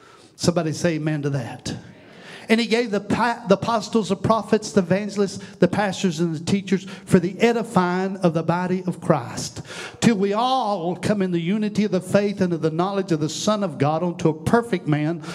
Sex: male